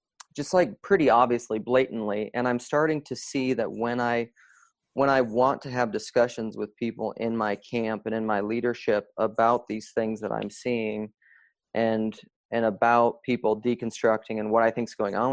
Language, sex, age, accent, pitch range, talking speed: English, male, 30-49, American, 110-125 Hz, 175 wpm